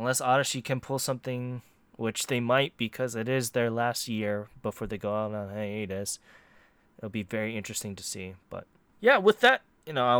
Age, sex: 20-39, male